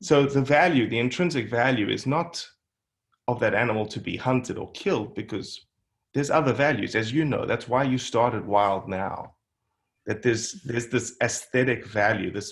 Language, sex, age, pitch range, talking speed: English, male, 30-49, 105-125 Hz, 175 wpm